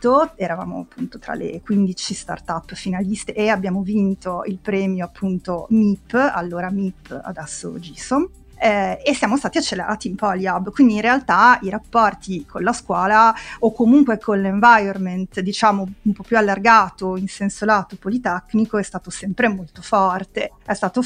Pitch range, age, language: 185-225 Hz, 30-49, Italian